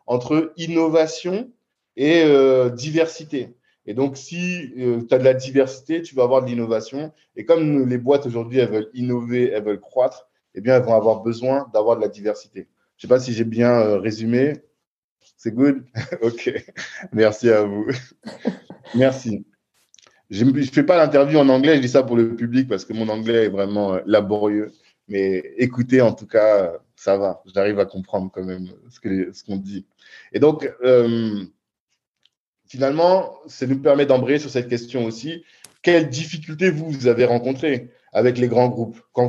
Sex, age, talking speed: male, 20-39, 180 wpm